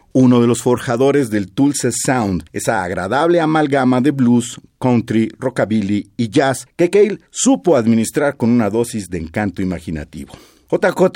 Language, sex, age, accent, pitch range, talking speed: Spanish, male, 50-69, Mexican, 105-150 Hz, 145 wpm